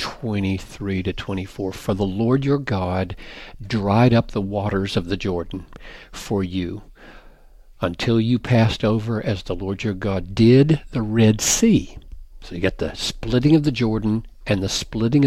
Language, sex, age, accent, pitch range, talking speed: English, male, 60-79, American, 100-125 Hz, 160 wpm